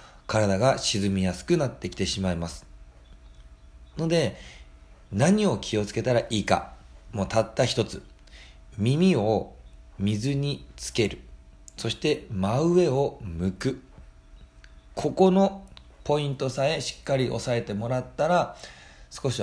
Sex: male